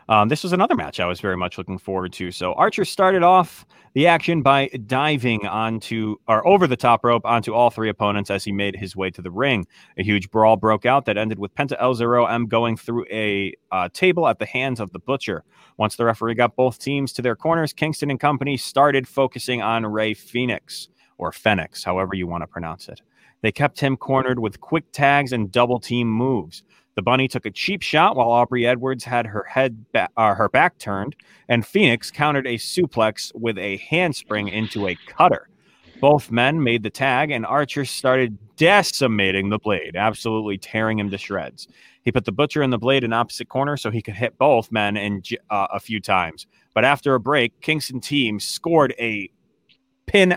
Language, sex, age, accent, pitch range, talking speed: English, male, 30-49, American, 105-135 Hz, 205 wpm